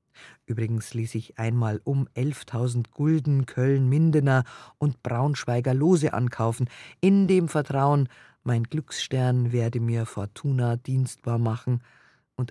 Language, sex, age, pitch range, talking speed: German, female, 50-69, 115-145 Hz, 110 wpm